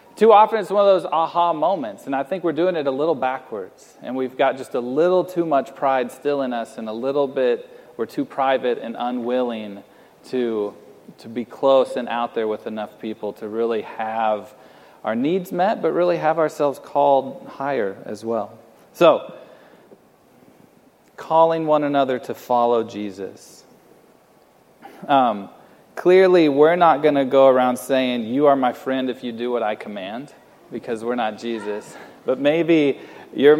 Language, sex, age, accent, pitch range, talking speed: English, male, 40-59, American, 115-150 Hz, 170 wpm